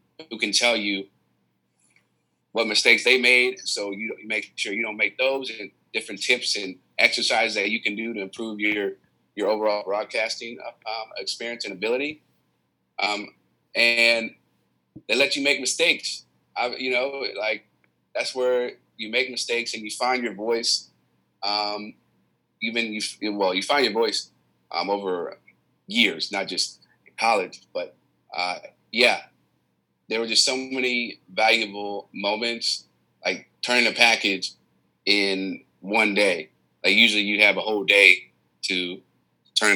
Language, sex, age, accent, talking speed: English, male, 30-49, American, 145 wpm